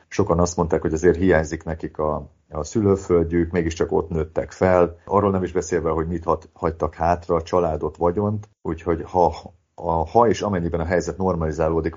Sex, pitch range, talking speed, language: male, 80-95 Hz, 175 wpm, Hungarian